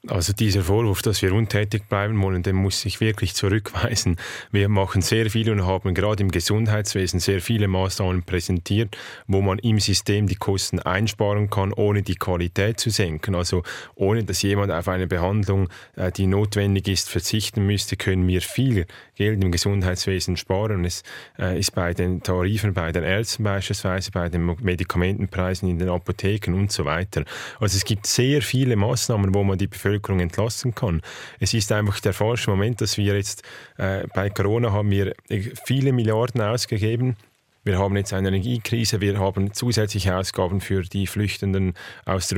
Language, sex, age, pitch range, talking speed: German, male, 30-49, 95-110 Hz, 170 wpm